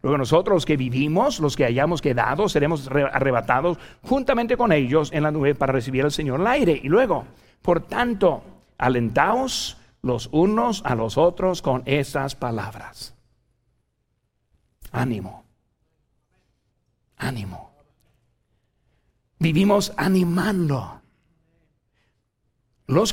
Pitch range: 135-215 Hz